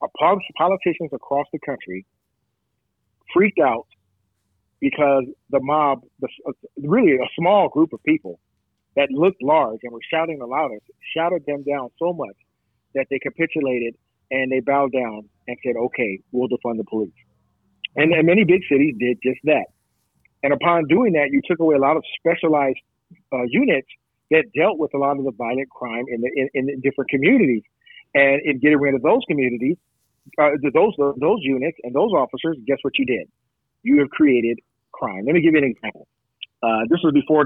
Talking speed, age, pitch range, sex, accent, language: 175 wpm, 40-59, 125-150 Hz, male, American, English